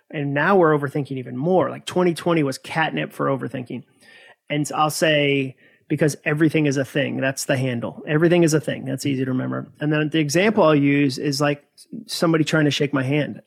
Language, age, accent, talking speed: English, 30-49, American, 200 wpm